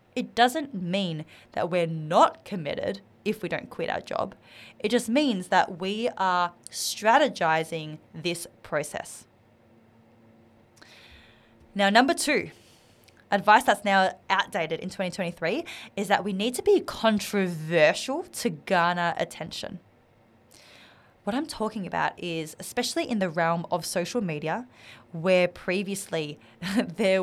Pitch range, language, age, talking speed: 160-210 Hz, English, 20-39, 125 wpm